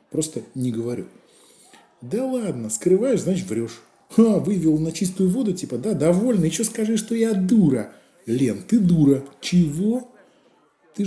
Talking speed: 140 wpm